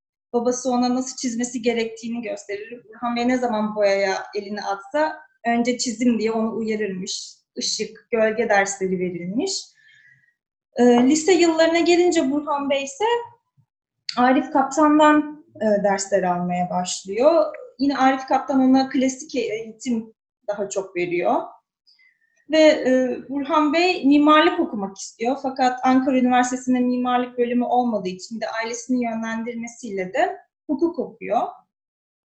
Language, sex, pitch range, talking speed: Turkish, female, 225-295 Hz, 115 wpm